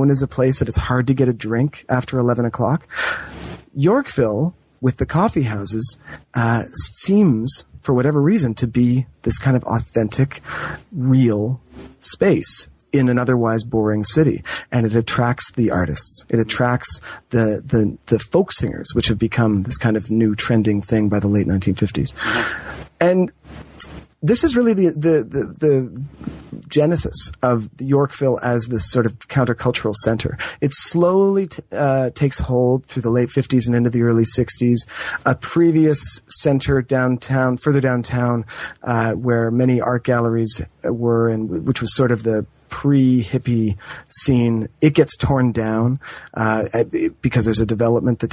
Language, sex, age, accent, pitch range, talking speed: English, male, 30-49, American, 115-135 Hz, 155 wpm